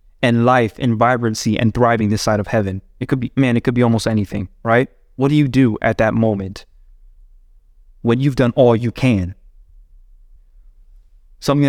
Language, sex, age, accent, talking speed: English, male, 20-39, American, 175 wpm